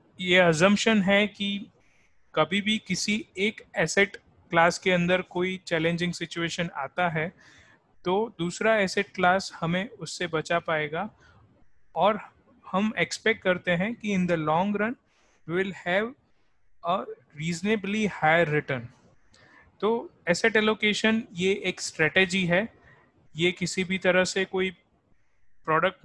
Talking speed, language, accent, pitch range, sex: 125 wpm, Hindi, native, 165-200 Hz, male